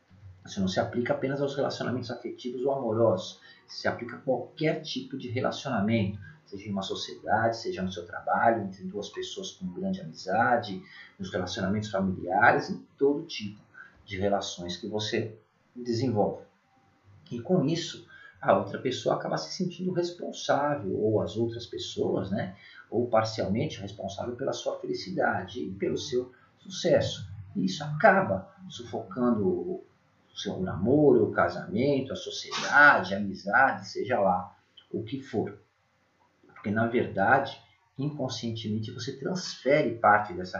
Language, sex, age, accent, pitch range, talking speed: Portuguese, male, 40-59, Brazilian, 105-165 Hz, 135 wpm